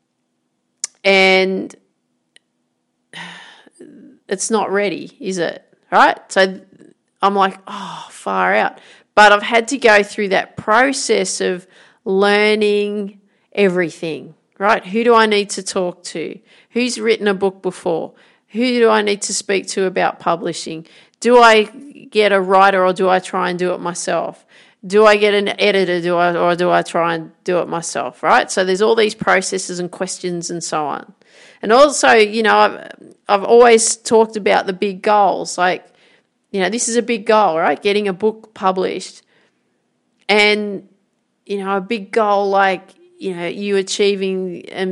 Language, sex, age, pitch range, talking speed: English, female, 40-59, 185-215 Hz, 165 wpm